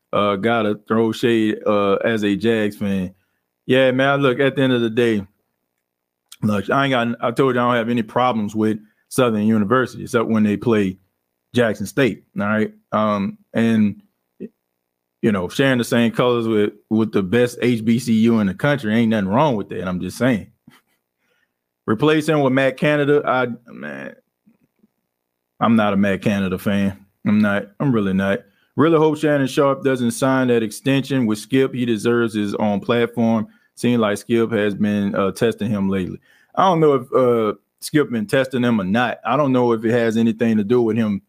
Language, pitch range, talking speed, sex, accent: English, 105-130 Hz, 185 wpm, male, American